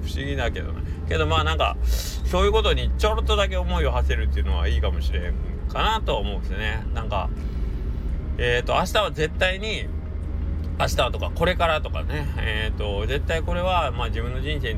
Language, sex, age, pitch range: Japanese, male, 20-39, 80-85 Hz